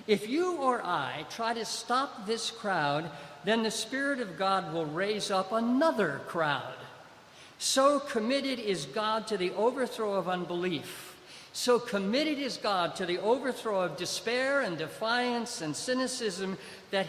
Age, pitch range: 50-69, 180-250 Hz